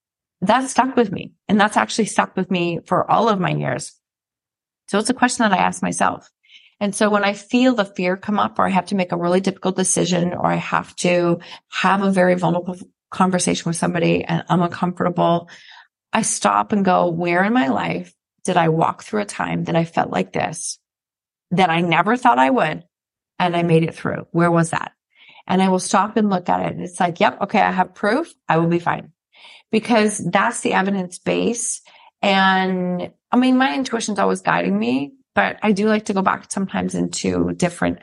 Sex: female